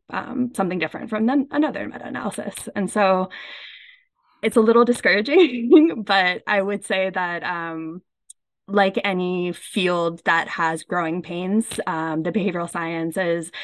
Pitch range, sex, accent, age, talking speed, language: 170-220 Hz, female, American, 20-39, 130 wpm, English